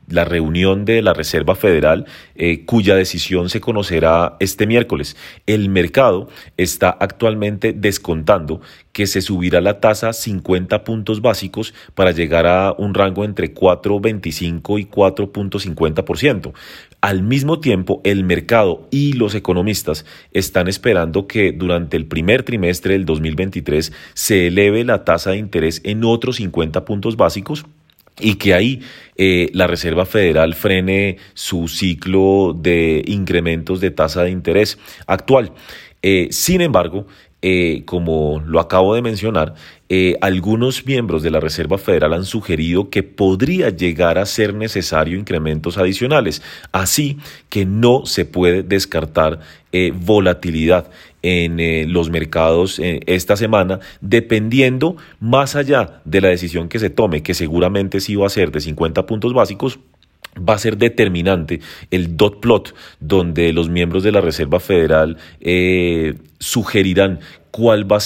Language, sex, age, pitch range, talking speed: Spanish, male, 30-49, 85-105 Hz, 140 wpm